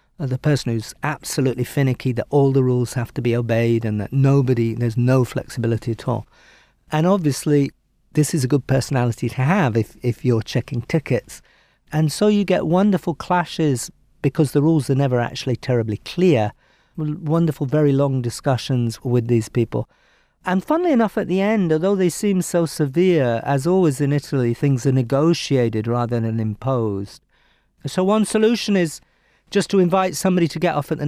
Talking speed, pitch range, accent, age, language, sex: 175 wpm, 120-160 Hz, British, 50-69, English, male